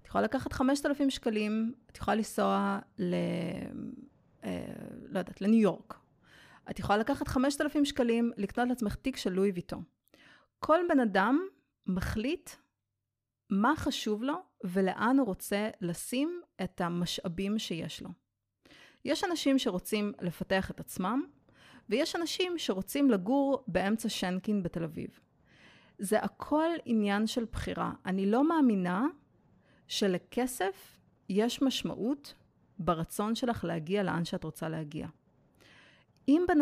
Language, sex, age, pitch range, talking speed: Hebrew, female, 30-49, 190-265 Hz, 120 wpm